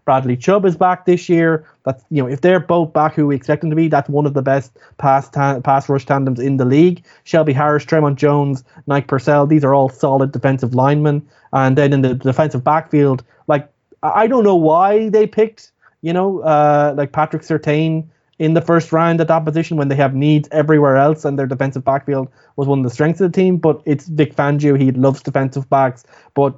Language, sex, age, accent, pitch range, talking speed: English, male, 20-39, Irish, 135-165 Hz, 220 wpm